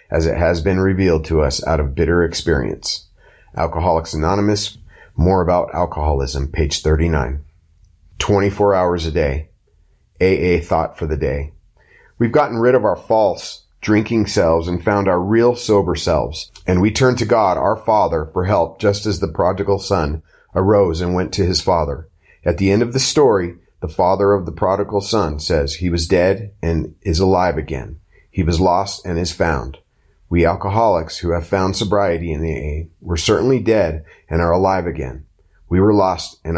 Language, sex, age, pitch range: English, male, 30-49, 80-100 Hz